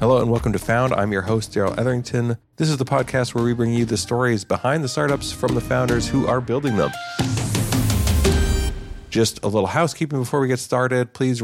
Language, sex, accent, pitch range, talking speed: English, male, American, 100-130 Hz, 205 wpm